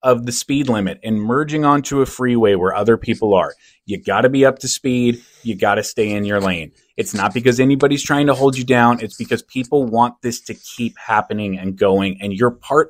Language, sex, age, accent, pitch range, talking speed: English, male, 30-49, American, 100-130 Hz, 230 wpm